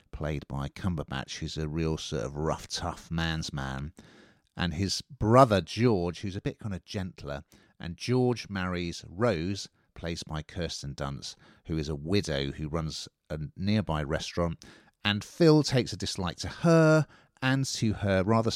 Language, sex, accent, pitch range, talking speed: English, male, British, 80-115 Hz, 160 wpm